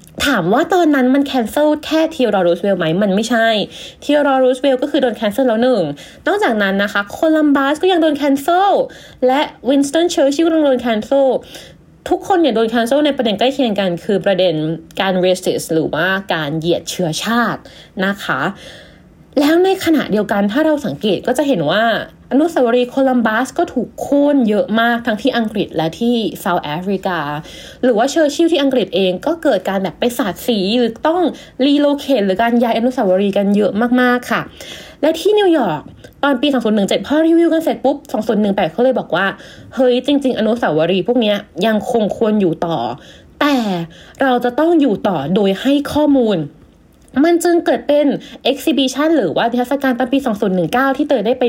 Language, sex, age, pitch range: Thai, female, 20-39, 200-285 Hz